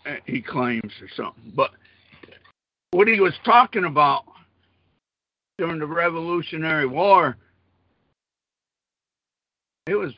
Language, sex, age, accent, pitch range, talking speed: English, male, 60-79, American, 130-190 Hz, 95 wpm